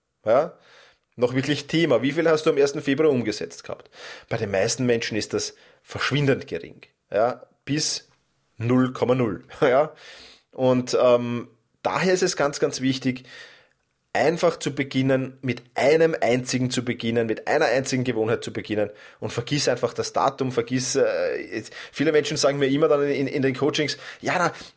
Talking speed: 155 wpm